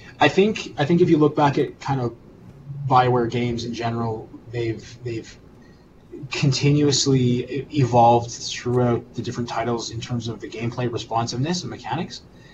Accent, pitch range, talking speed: American, 115-130 Hz, 150 wpm